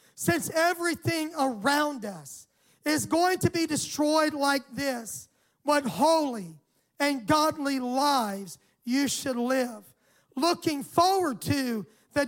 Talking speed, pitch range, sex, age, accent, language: 110 wpm, 255-325 Hz, male, 40-59, American, English